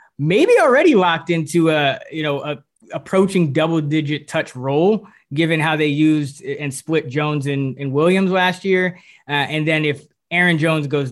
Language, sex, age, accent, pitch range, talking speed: English, male, 20-39, American, 145-165 Hz, 175 wpm